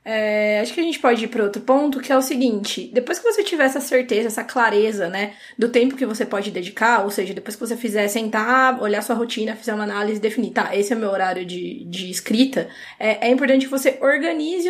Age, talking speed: 20-39, 235 wpm